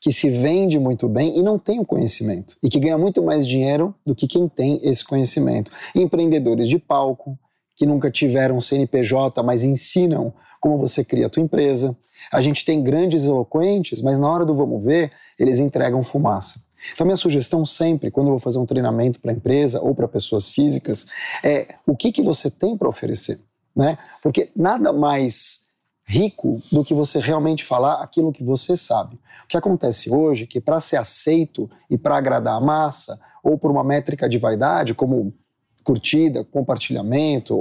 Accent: Brazilian